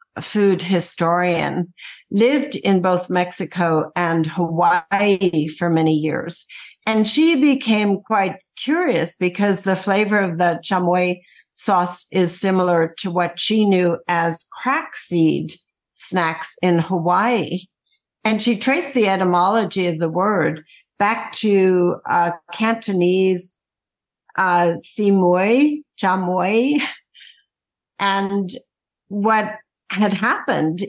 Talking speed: 105 wpm